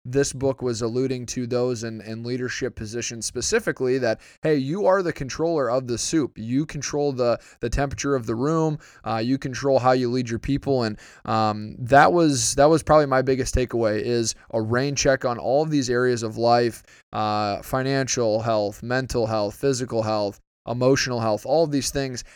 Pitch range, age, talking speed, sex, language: 115-140 Hz, 20-39, 190 wpm, male, English